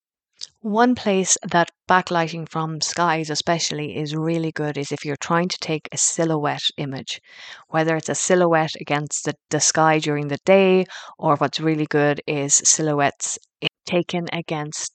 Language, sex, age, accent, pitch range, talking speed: English, female, 30-49, Irish, 150-175 Hz, 155 wpm